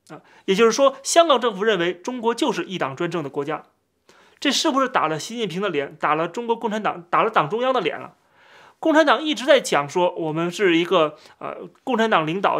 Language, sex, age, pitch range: Chinese, male, 30-49, 170-245 Hz